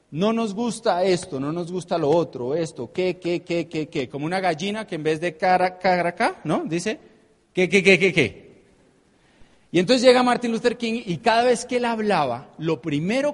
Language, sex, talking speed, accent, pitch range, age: Spanish, male, 210 wpm, Colombian, 135-185 Hz, 40-59